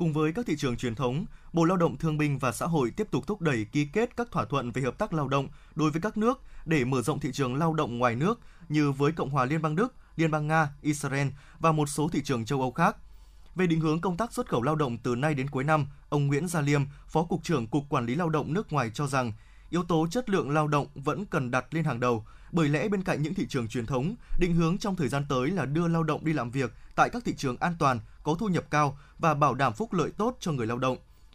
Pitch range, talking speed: 140-175 Hz, 280 wpm